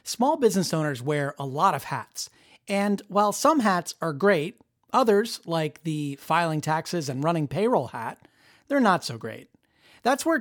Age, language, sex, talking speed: 30-49, English, male, 165 wpm